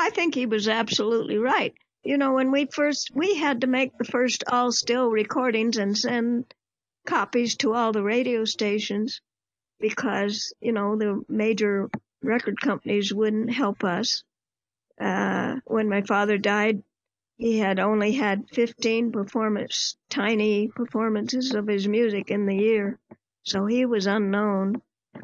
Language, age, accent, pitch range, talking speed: English, 50-69, American, 200-240 Hz, 145 wpm